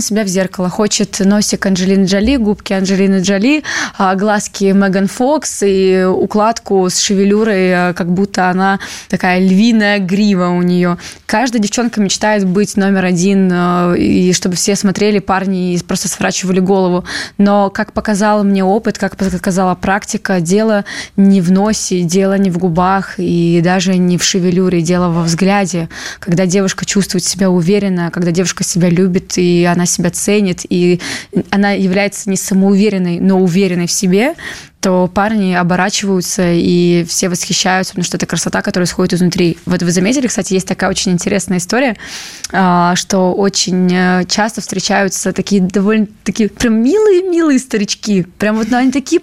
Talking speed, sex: 150 wpm, female